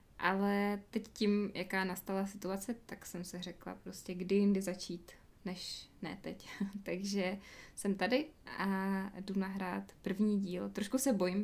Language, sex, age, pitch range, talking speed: Czech, female, 20-39, 190-205 Hz, 145 wpm